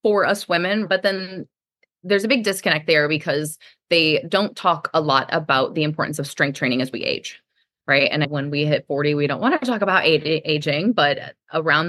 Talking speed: 200 wpm